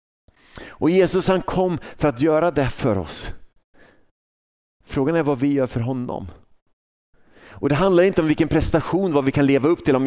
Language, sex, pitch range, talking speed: Swedish, male, 100-135 Hz, 185 wpm